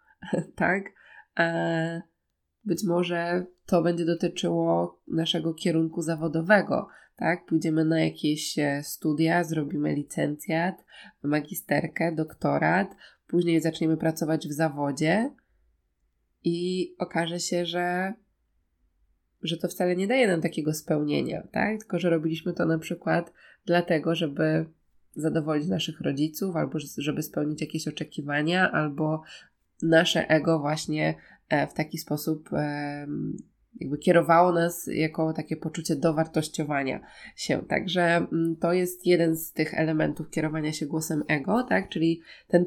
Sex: female